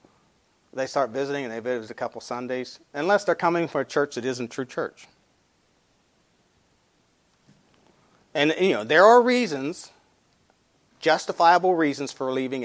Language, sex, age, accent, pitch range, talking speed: English, male, 40-59, American, 125-170 Hz, 140 wpm